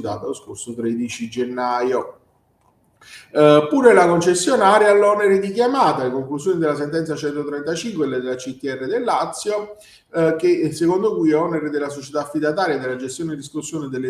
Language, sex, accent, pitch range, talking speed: Italian, male, native, 135-190 Hz, 150 wpm